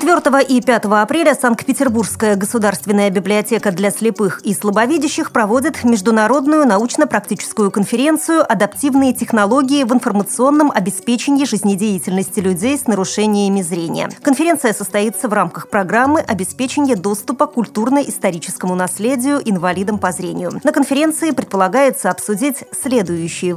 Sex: female